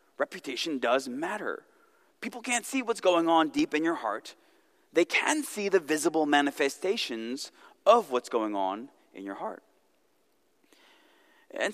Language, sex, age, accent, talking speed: English, male, 20-39, American, 140 wpm